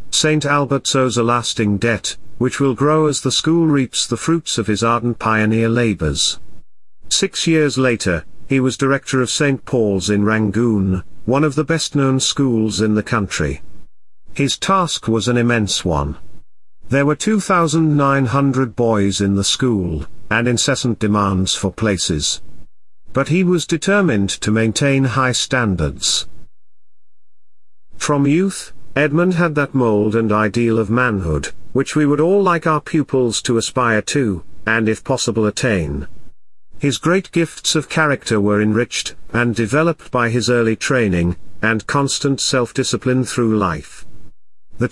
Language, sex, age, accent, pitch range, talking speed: English, male, 50-69, British, 105-140 Hz, 145 wpm